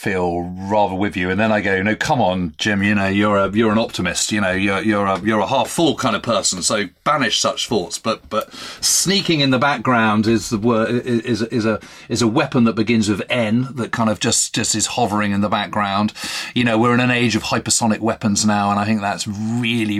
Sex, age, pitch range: male, 40-59, 105-135 Hz